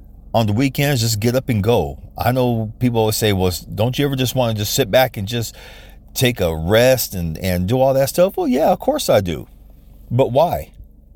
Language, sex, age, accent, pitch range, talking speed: English, male, 40-59, American, 90-120 Hz, 225 wpm